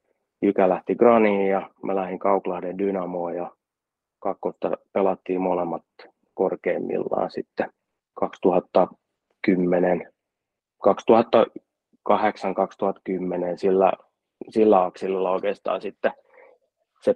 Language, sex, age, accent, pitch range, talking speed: Finnish, male, 30-49, native, 90-100 Hz, 70 wpm